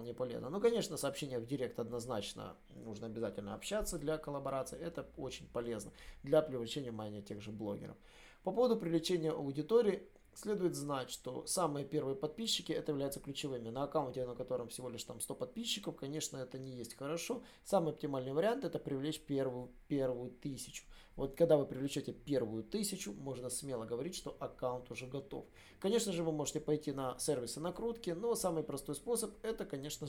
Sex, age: male, 20-39